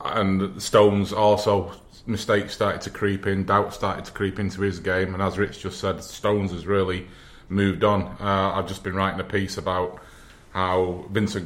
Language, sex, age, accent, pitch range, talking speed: English, male, 30-49, British, 90-100 Hz, 185 wpm